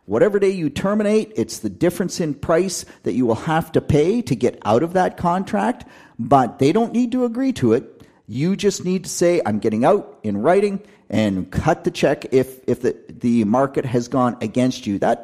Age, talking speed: 50-69, 210 wpm